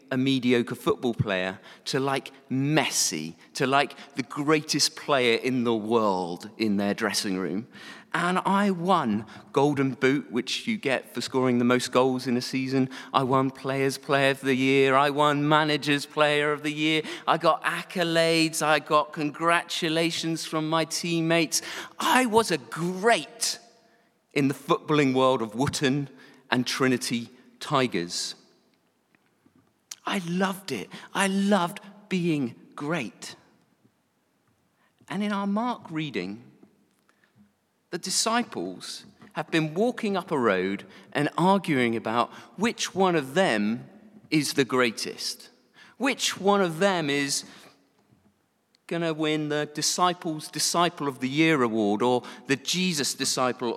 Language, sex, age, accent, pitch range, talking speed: English, male, 40-59, British, 125-165 Hz, 135 wpm